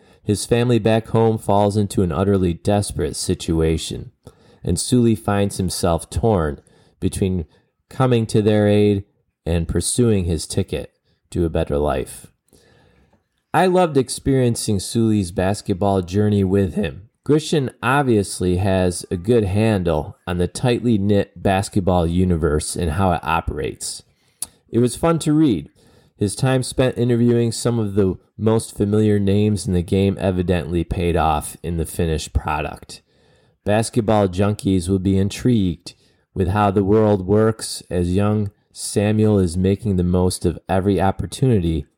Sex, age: male, 30-49